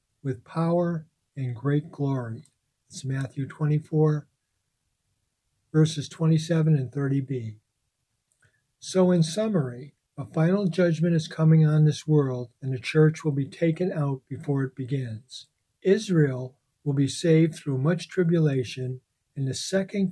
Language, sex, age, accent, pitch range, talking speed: English, male, 60-79, American, 130-160 Hz, 130 wpm